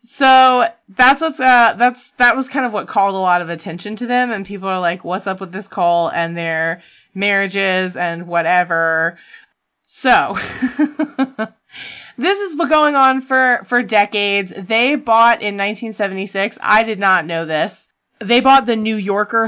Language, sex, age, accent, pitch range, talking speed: English, female, 20-39, American, 170-225 Hz, 165 wpm